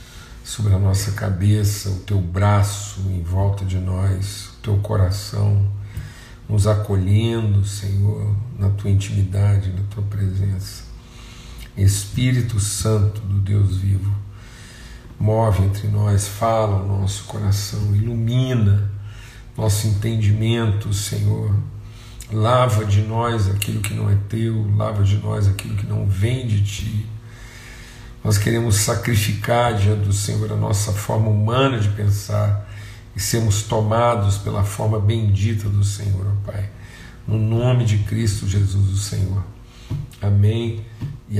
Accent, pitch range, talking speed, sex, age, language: Brazilian, 100-115 Hz, 125 wpm, male, 50-69, Portuguese